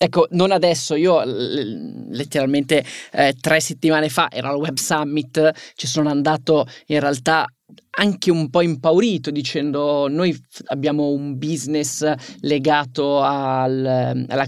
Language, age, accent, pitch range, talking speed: Italian, 20-39, native, 140-165 Hz, 130 wpm